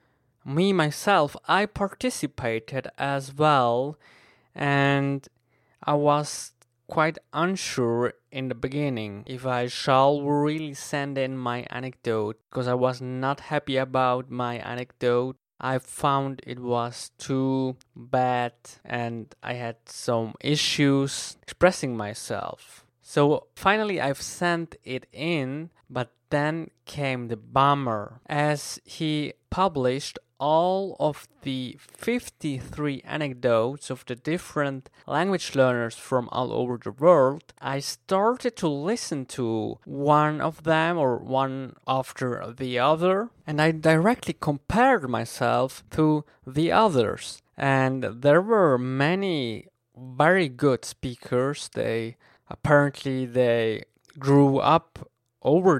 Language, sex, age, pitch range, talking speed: English, male, 20-39, 125-150 Hz, 115 wpm